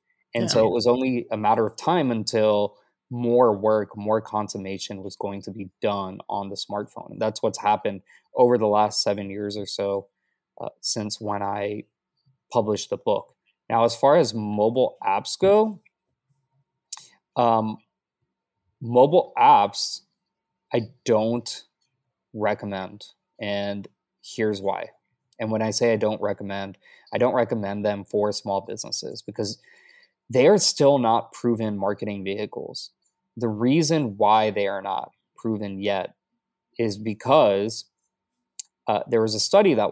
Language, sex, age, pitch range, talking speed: English, male, 20-39, 105-130 Hz, 140 wpm